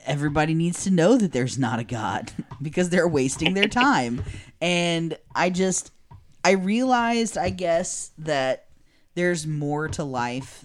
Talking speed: 145 wpm